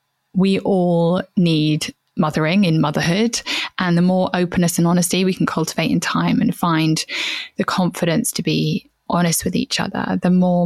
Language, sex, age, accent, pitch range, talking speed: English, female, 10-29, British, 170-210 Hz, 165 wpm